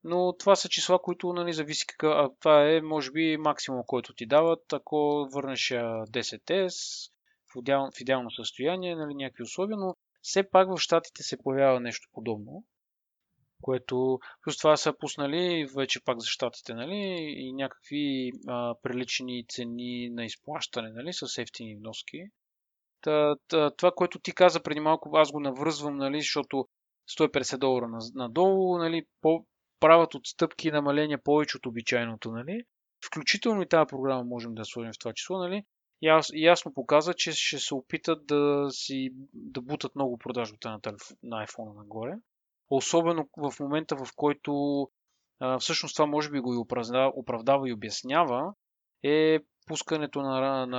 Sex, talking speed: male, 150 wpm